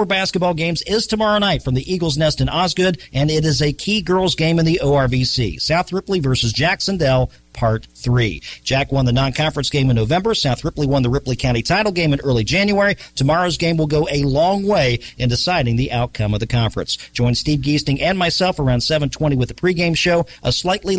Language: English